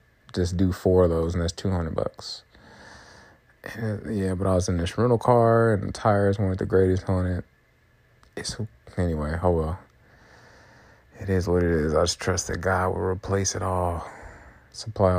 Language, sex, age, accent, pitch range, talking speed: English, male, 30-49, American, 90-110 Hz, 175 wpm